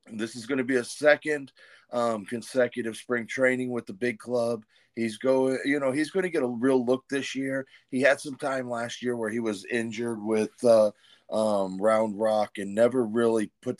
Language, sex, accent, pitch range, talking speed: English, male, American, 100-120 Hz, 205 wpm